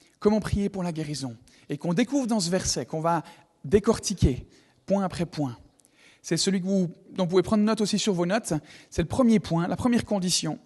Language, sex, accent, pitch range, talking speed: French, male, French, 145-210 Hz, 210 wpm